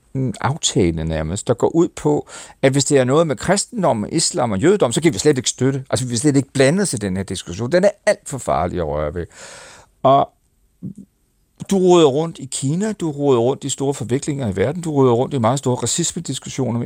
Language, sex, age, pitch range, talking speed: Danish, male, 60-79, 110-165 Hz, 215 wpm